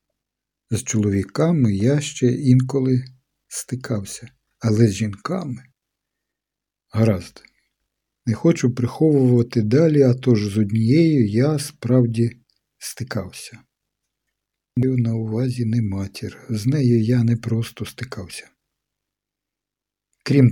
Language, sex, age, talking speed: Ukrainian, male, 60-79, 95 wpm